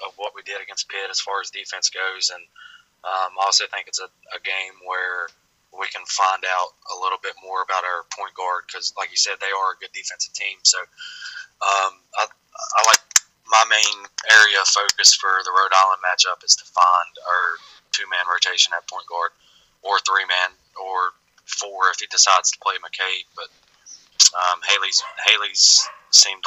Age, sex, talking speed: 20-39, male, 190 wpm